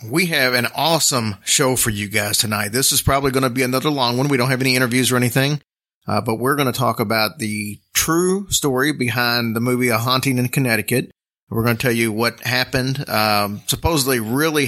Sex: male